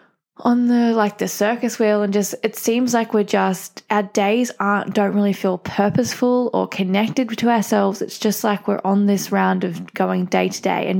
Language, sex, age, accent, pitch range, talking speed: English, female, 10-29, Australian, 200-235 Hz, 200 wpm